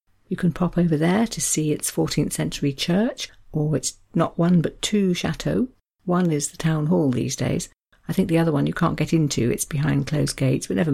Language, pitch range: English, 145-180 Hz